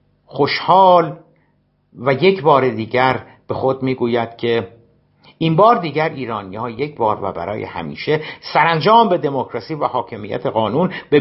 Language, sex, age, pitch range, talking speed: Persian, male, 60-79, 120-165 Hz, 145 wpm